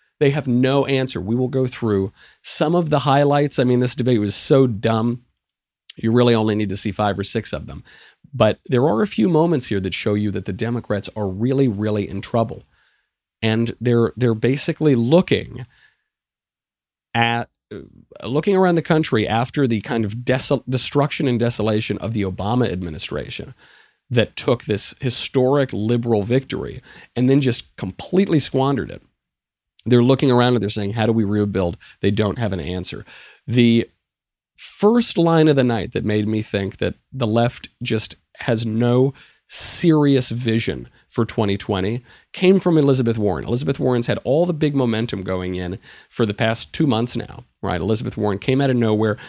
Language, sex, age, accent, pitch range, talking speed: English, male, 40-59, American, 105-130 Hz, 175 wpm